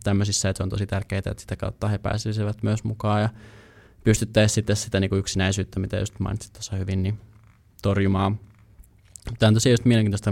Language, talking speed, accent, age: Finnish, 155 wpm, native, 20-39